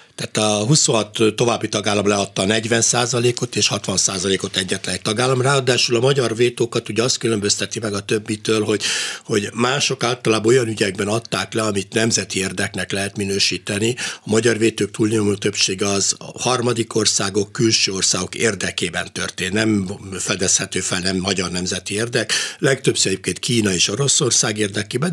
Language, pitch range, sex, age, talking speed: Hungarian, 100-130 Hz, male, 60-79, 140 wpm